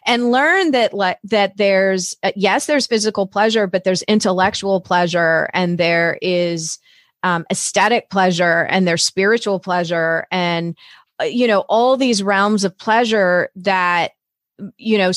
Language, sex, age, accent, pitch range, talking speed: English, female, 30-49, American, 180-230 Hz, 145 wpm